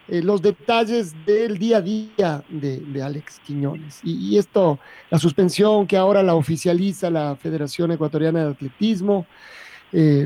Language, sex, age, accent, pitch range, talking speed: Spanish, male, 40-59, Mexican, 155-205 Hz, 150 wpm